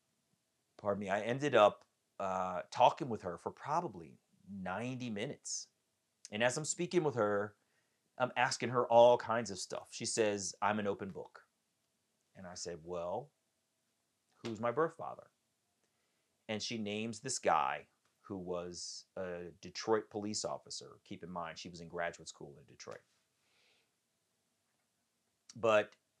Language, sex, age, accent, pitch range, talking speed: English, male, 30-49, American, 90-115 Hz, 140 wpm